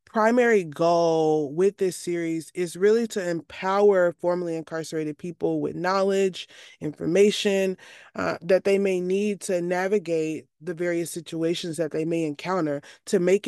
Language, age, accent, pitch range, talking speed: English, 20-39, American, 160-200 Hz, 140 wpm